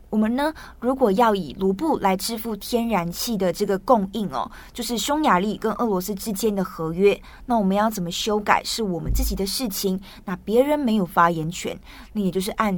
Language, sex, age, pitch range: Chinese, female, 20-39, 190-230 Hz